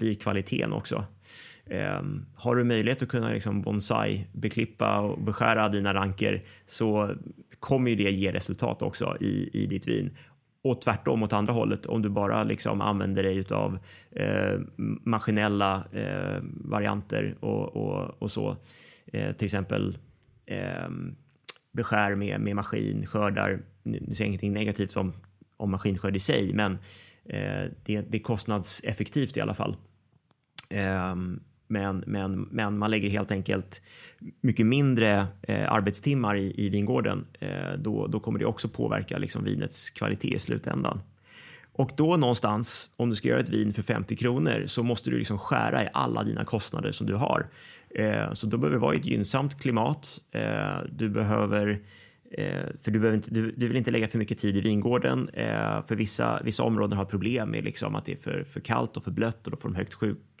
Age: 30-49